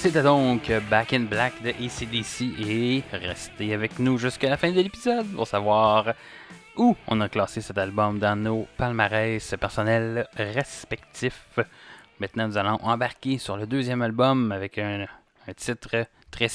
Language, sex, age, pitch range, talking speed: French, male, 20-39, 105-135 Hz, 150 wpm